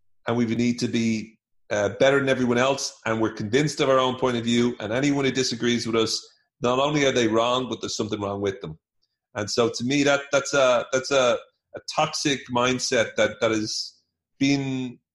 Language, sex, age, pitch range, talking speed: English, male, 30-49, 115-140 Hz, 205 wpm